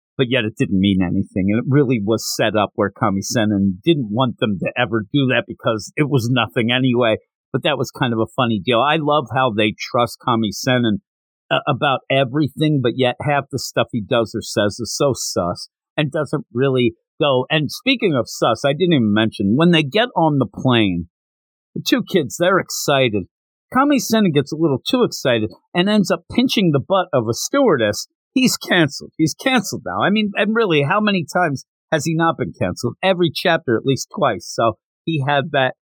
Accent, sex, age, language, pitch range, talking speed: American, male, 50-69, English, 110-155 Hz, 200 wpm